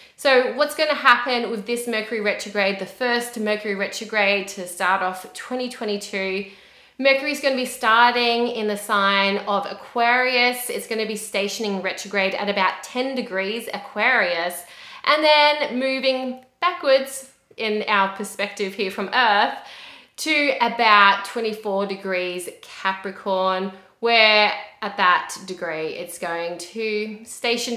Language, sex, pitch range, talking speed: English, female, 195-260 Hz, 135 wpm